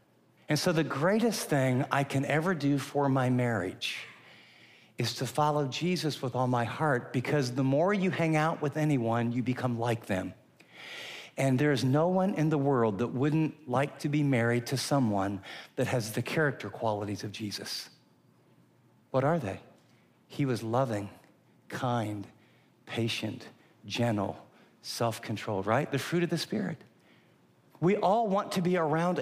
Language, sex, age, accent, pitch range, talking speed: English, male, 50-69, American, 125-165 Hz, 160 wpm